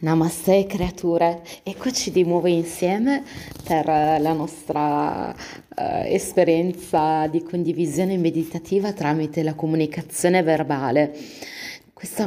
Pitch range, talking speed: 160-215 Hz, 95 wpm